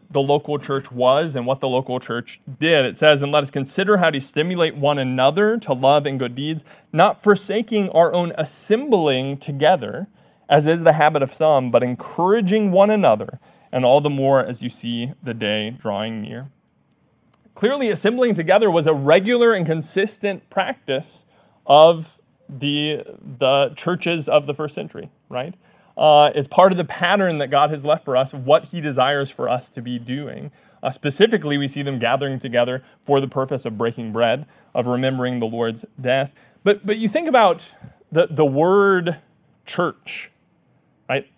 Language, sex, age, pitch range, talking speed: English, male, 30-49, 135-180 Hz, 175 wpm